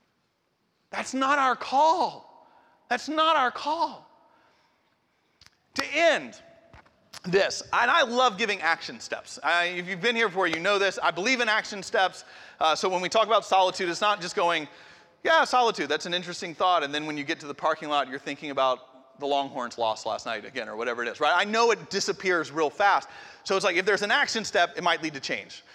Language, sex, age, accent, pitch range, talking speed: English, male, 30-49, American, 170-230 Hz, 205 wpm